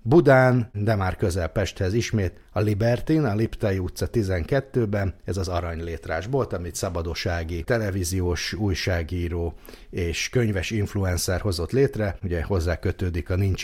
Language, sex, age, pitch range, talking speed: Hungarian, male, 60-79, 85-110 Hz, 130 wpm